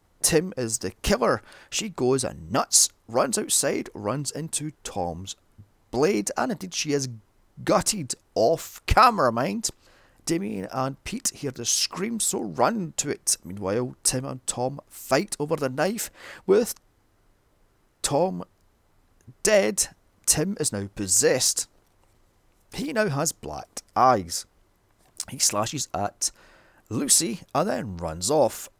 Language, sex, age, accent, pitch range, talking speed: English, male, 30-49, British, 100-135 Hz, 125 wpm